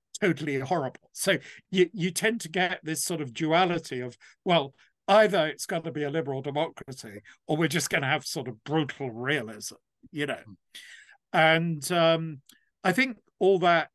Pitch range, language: 140-180 Hz, English